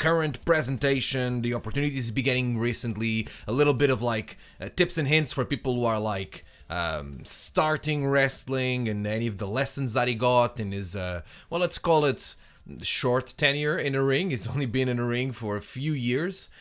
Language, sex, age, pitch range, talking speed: English, male, 20-39, 105-140 Hz, 190 wpm